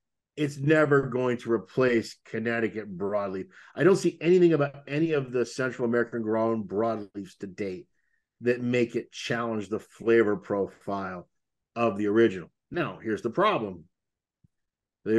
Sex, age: male, 50-69